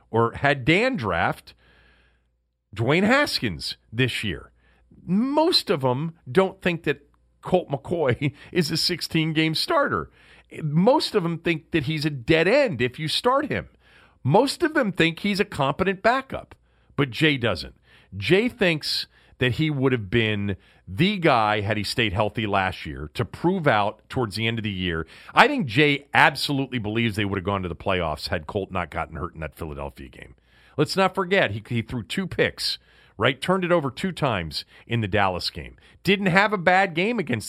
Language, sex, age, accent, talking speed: English, male, 40-59, American, 180 wpm